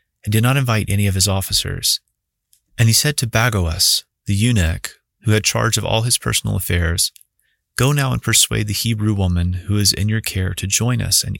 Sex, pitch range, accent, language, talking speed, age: male, 95-115 Hz, American, English, 205 wpm, 30-49